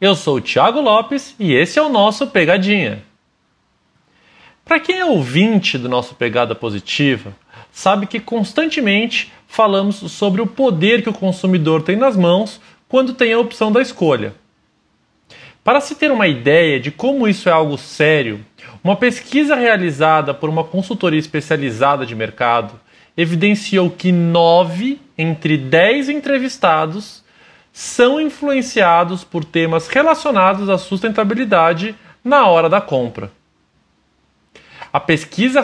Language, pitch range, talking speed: Portuguese, 155-235 Hz, 130 wpm